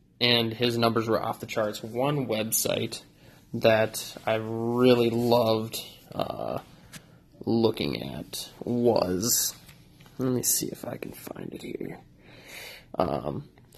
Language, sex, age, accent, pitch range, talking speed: English, male, 20-39, American, 110-120 Hz, 120 wpm